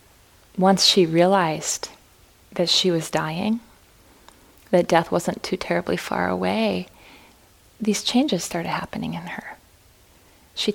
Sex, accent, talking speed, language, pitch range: female, American, 115 wpm, English, 185-215 Hz